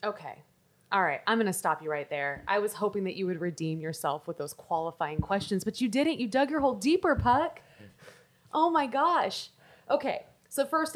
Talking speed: 195 wpm